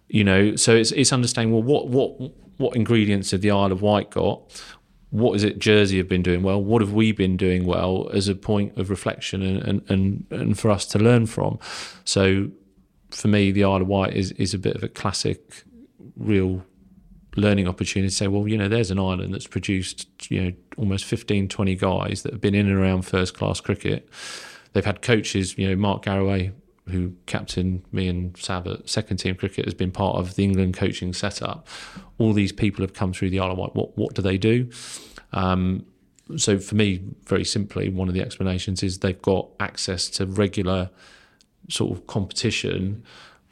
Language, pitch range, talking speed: English, 95-105 Hz, 195 wpm